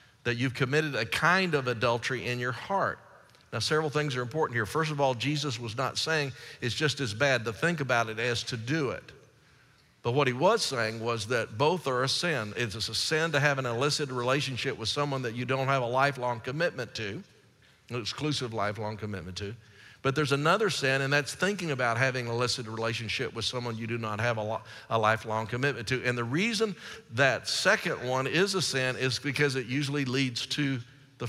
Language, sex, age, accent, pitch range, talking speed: English, male, 50-69, American, 120-145 Hz, 205 wpm